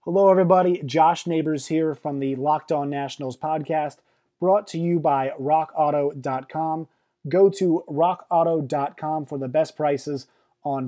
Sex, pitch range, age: male, 145-180 Hz, 20-39